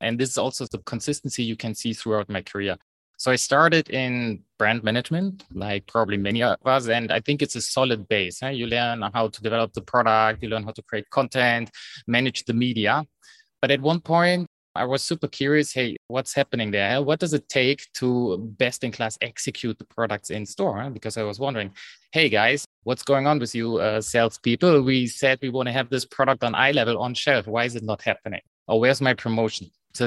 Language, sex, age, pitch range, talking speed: English, male, 20-39, 105-130 Hz, 210 wpm